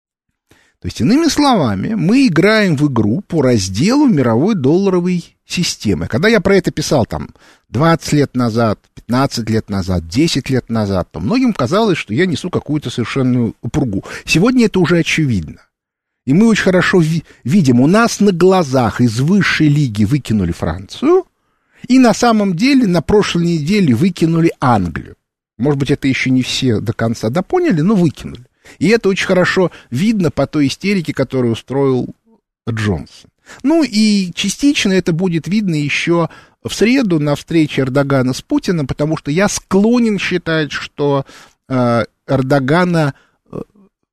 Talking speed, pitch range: 145 wpm, 125-195 Hz